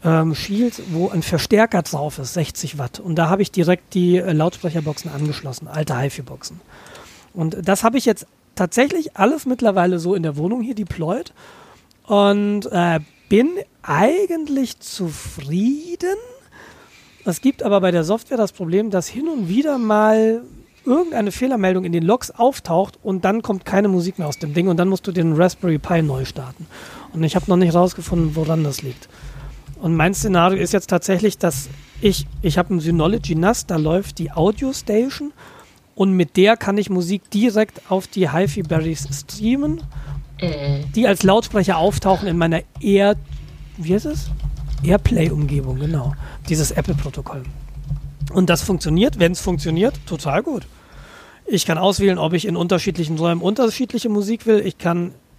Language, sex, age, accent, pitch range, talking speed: German, male, 40-59, German, 160-205 Hz, 165 wpm